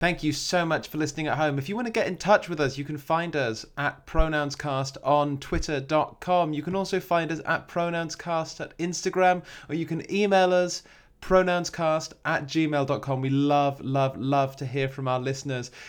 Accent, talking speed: British, 195 wpm